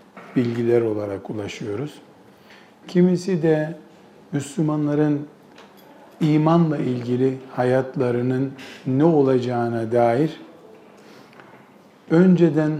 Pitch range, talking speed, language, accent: 130-170 Hz, 60 wpm, Turkish, native